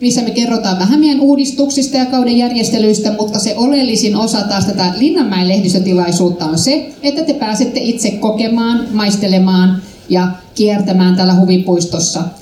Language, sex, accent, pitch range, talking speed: Finnish, female, native, 185-235 Hz, 140 wpm